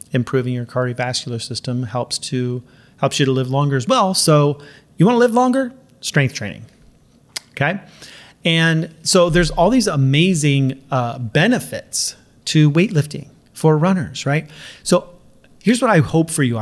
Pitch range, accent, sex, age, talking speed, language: 125-150 Hz, American, male, 30-49, 150 wpm, English